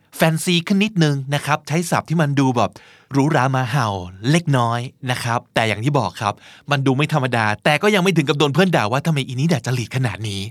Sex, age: male, 20-39